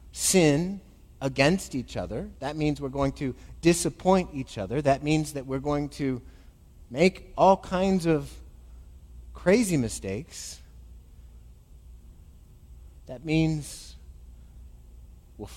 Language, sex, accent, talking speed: English, male, American, 105 wpm